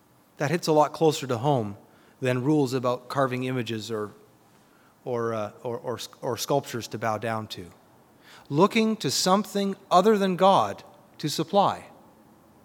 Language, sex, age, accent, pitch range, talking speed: English, male, 30-49, American, 125-165 Hz, 145 wpm